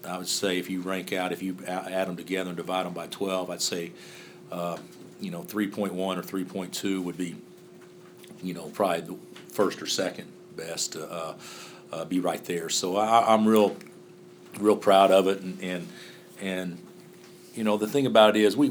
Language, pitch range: English, 90-105 Hz